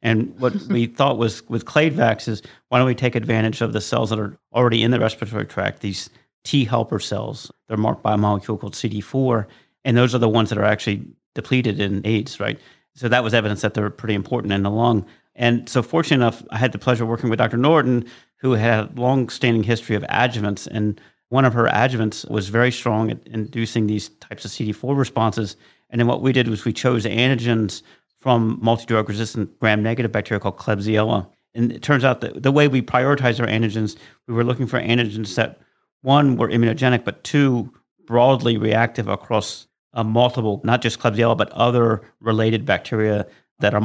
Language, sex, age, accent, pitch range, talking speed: English, male, 40-59, American, 105-125 Hz, 195 wpm